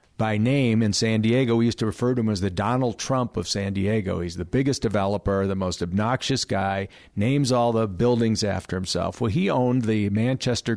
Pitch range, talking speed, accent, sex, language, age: 100-120 Hz, 205 wpm, American, male, English, 50-69